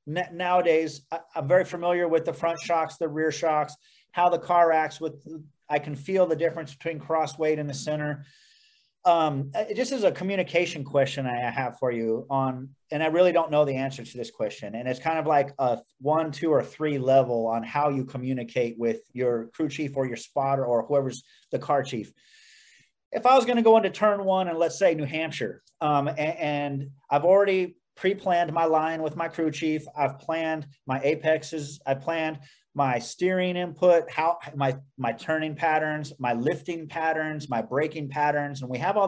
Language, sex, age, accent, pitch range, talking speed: English, male, 30-49, American, 145-170 Hz, 190 wpm